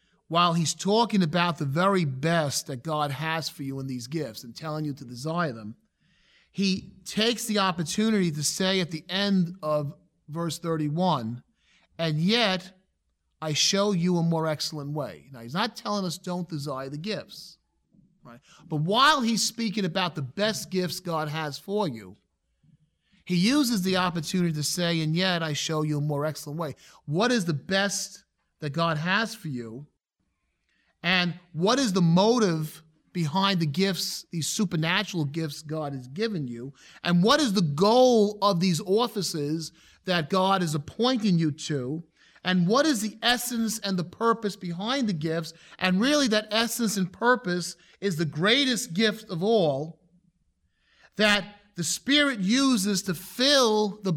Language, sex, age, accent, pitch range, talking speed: English, male, 40-59, American, 155-200 Hz, 165 wpm